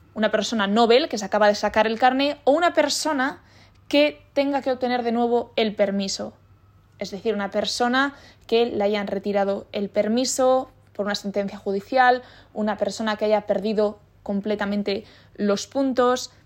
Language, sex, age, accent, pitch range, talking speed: Spanish, female, 20-39, Spanish, 205-265 Hz, 155 wpm